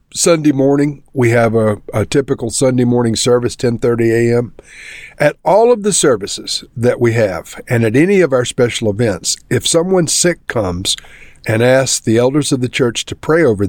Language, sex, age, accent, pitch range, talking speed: English, male, 50-69, American, 110-140 Hz, 180 wpm